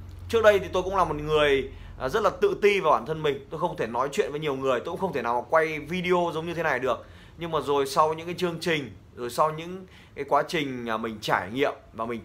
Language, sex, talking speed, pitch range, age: Vietnamese, male, 270 wpm, 125-185 Hz, 20-39